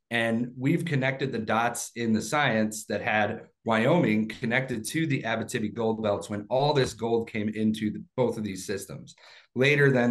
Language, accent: English, American